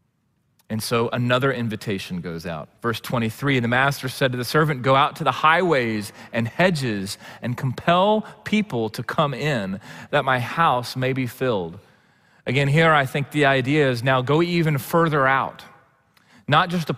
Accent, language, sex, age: American, English, male, 30-49